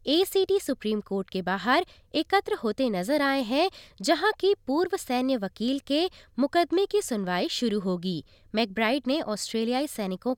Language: Hindi